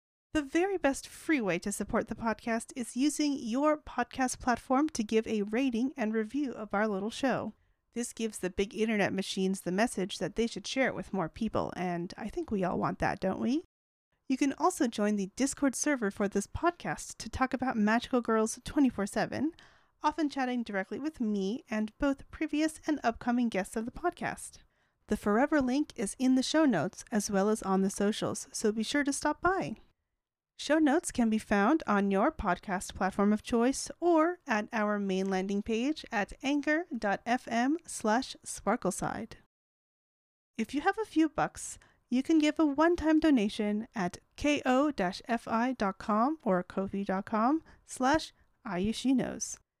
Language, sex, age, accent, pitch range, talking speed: English, female, 30-49, American, 205-285 Hz, 165 wpm